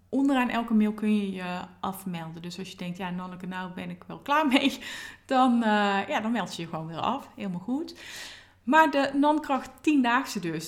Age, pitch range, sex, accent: 20-39, 185-235 Hz, female, Dutch